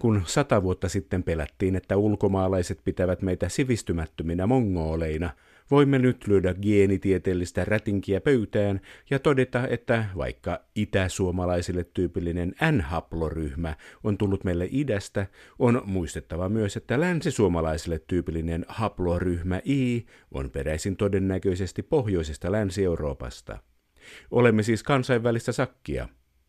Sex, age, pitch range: male, 50-69, 85-115 Hz